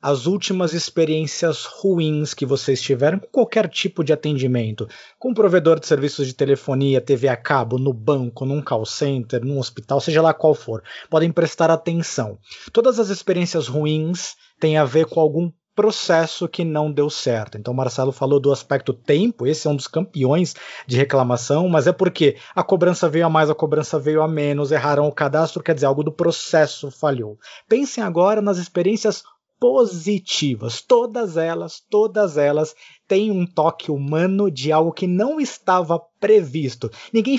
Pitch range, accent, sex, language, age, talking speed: 145-185 Hz, Brazilian, male, Portuguese, 20-39, 170 wpm